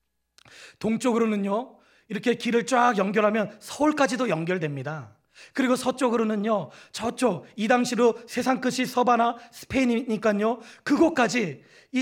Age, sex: 30-49, male